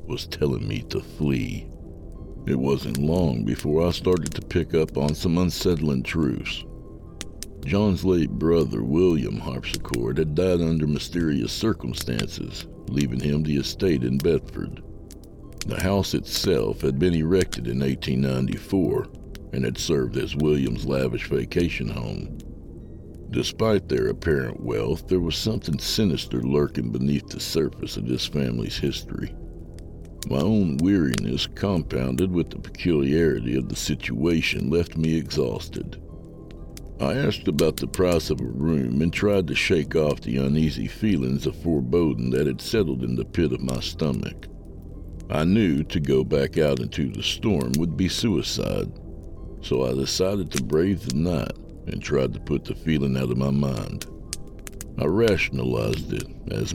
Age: 60-79